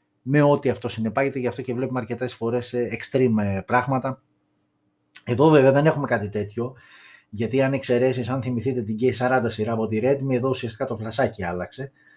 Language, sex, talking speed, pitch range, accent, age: Greek, male, 170 wpm, 110-140 Hz, native, 20-39